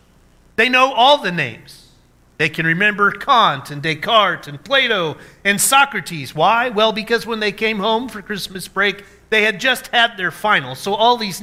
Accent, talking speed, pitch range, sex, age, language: American, 180 wpm, 155-230 Hz, male, 40-59, English